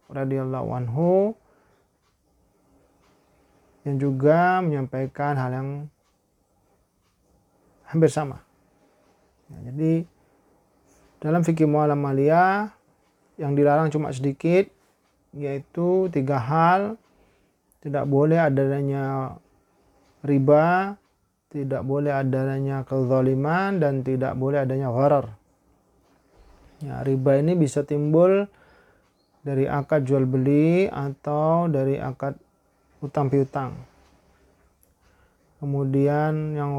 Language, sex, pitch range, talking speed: Indonesian, male, 130-155 Hz, 80 wpm